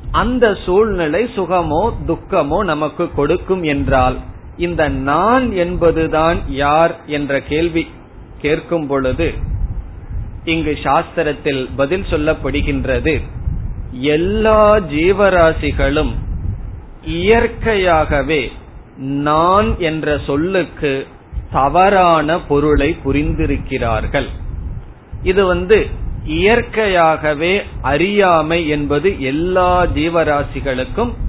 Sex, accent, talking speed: male, native, 65 wpm